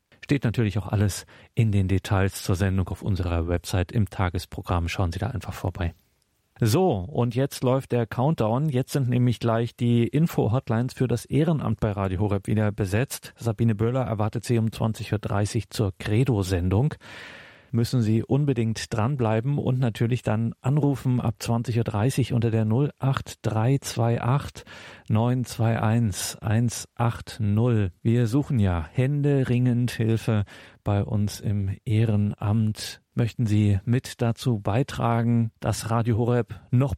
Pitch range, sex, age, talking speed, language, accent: 105-125 Hz, male, 40-59, 135 wpm, German, German